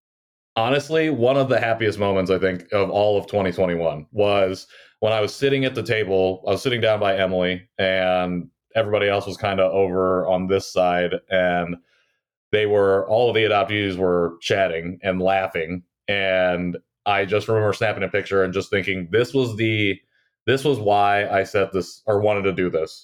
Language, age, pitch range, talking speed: English, 30-49, 95-110 Hz, 185 wpm